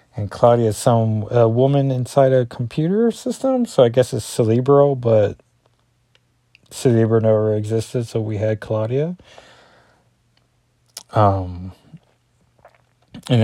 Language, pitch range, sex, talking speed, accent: English, 105-130 Hz, male, 105 wpm, American